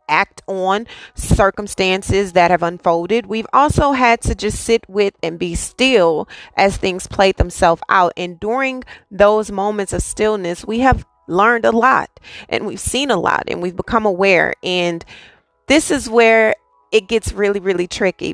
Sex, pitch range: female, 180-215 Hz